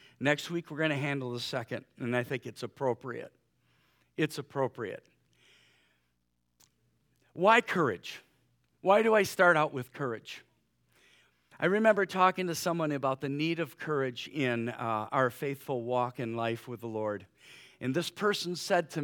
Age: 50-69